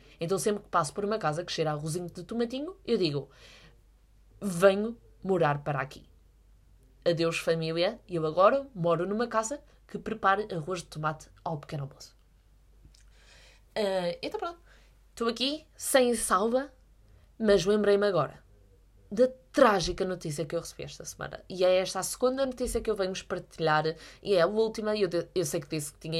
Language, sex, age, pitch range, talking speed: Portuguese, female, 20-39, 155-230 Hz, 165 wpm